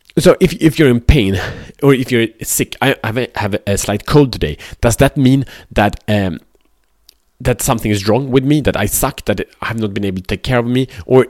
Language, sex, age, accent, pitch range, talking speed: Swedish, male, 30-49, Norwegian, 100-130 Hz, 235 wpm